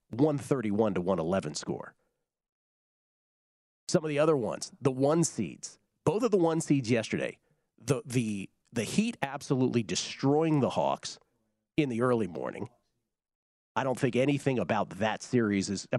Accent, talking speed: American, 145 wpm